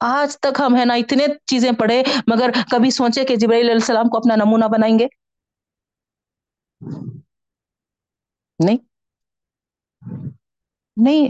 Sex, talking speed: female, 105 wpm